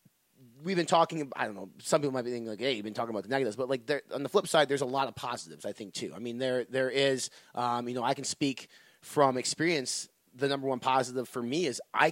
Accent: American